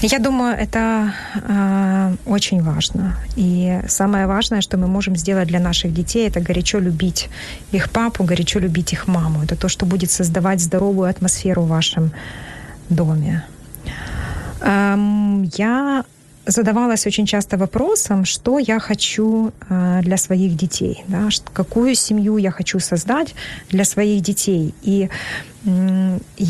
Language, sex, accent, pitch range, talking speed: Ukrainian, female, native, 180-210 Hz, 130 wpm